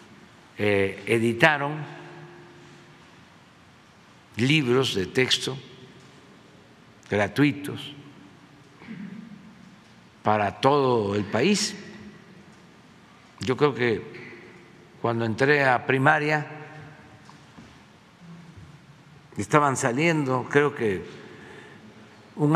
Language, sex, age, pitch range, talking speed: Spanish, male, 60-79, 120-170 Hz, 55 wpm